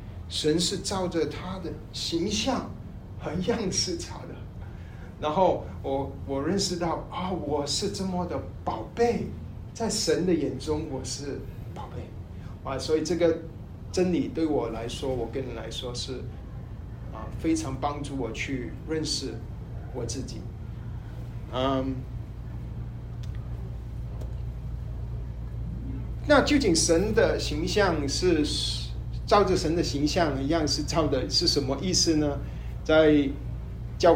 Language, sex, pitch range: Chinese, male, 115-155 Hz